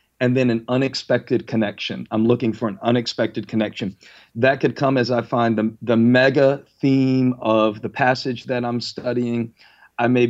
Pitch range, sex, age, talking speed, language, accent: 110-120 Hz, male, 40-59, 170 wpm, English, American